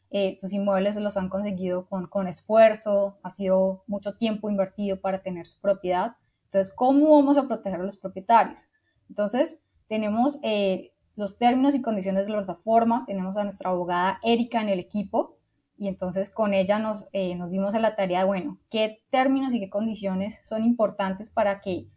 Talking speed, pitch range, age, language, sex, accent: 180 wpm, 195-230 Hz, 20-39, Spanish, female, Colombian